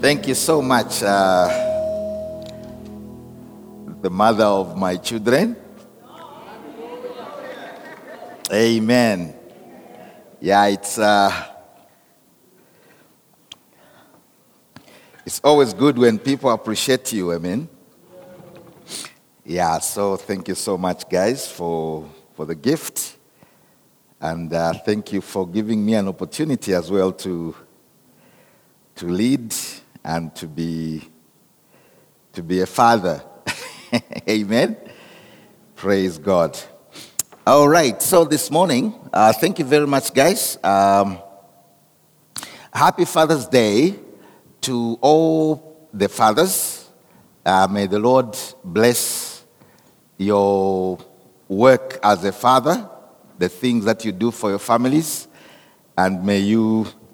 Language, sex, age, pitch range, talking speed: English, male, 60-79, 95-130 Hz, 100 wpm